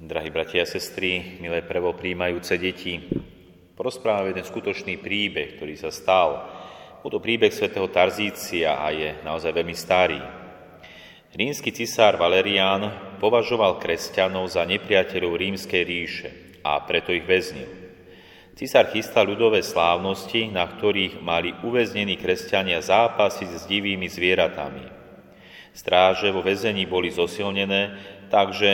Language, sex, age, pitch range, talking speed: Slovak, male, 30-49, 90-105 Hz, 115 wpm